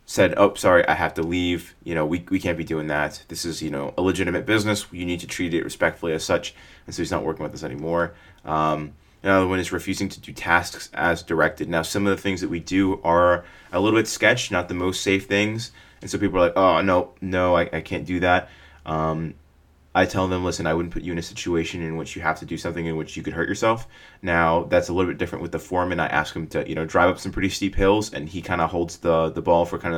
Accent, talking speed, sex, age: American, 270 wpm, male, 20-39